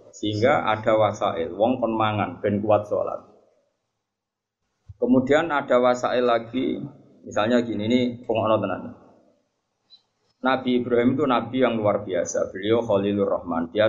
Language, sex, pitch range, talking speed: Indonesian, male, 105-125 Hz, 120 wpm